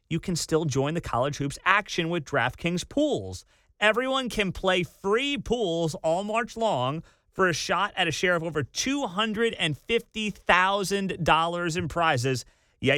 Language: English